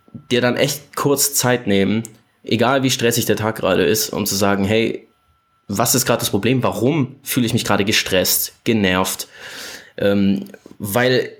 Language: German